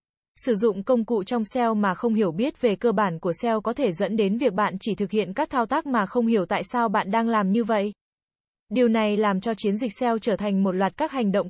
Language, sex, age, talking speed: Vietnamese, female, 20-39, 265 wpm